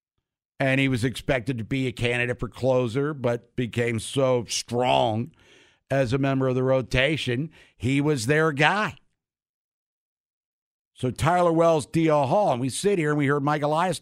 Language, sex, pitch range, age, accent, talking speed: English, male, 120-155 Hz, 60-79, American, 165 wpm